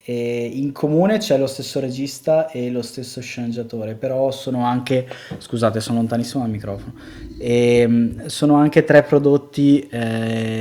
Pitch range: 110-135 Hz